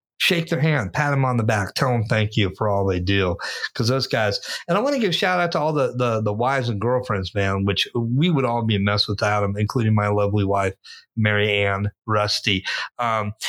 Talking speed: 235 wpm